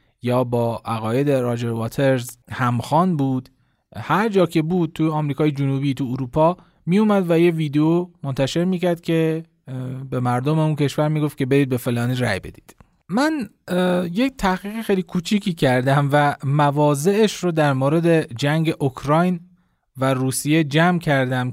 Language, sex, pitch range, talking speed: Persian, male, 130-175 Hz, 150 wpm